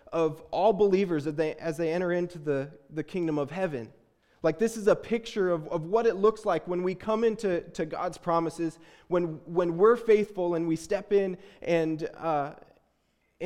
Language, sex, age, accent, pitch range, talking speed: English, male, 20-39, American, 155-190 Hz, 185 wpm